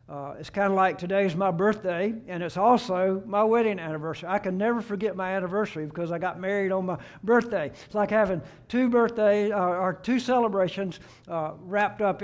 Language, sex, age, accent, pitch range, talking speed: English, male, 60-79, American, 170-210 Hz, 190 wpm